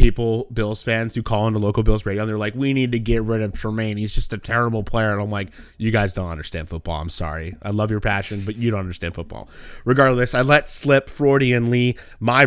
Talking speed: 235 wpm